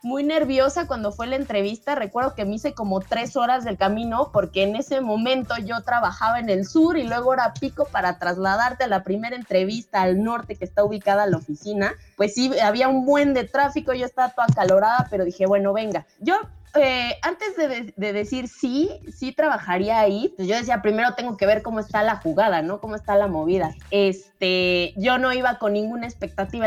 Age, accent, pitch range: 20-39, Mexican, 200-260 Hz